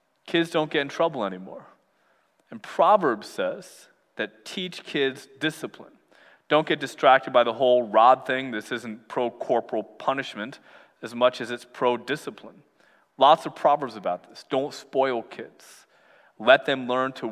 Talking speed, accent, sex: 145 wpm, American, male